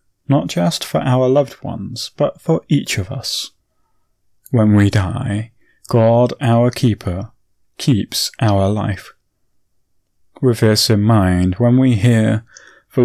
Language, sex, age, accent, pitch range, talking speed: English, male, 30-49, British, 105-130 Hz, 130 wpm